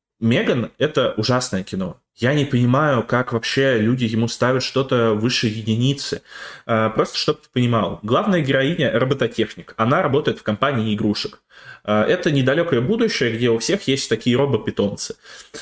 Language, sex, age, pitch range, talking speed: Russian, male, 20-39, 110-140 Hz, 140 wpm